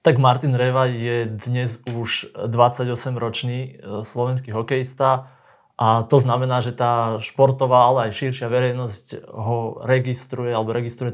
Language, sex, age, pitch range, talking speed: Slovak, male, 20-39, 120-130 Hz, 125 wpm